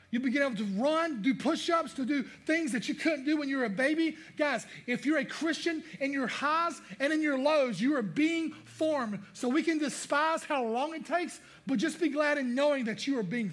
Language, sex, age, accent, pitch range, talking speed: English, male, 30-49, American, 205-270 Hz, 235 wpm